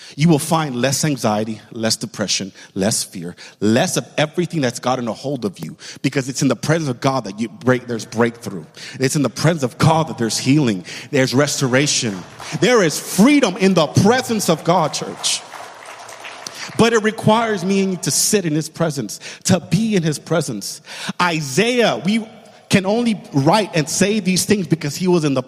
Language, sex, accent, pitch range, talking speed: English, male, American, 135-200 Hz, 190 wpm